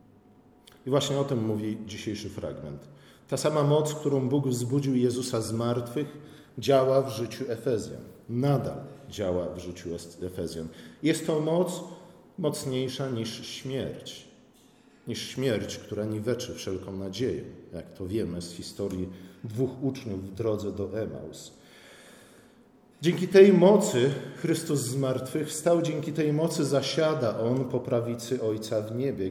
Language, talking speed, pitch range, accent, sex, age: Polish, 130 wpm, 110-150 Hz, native, male, 40-59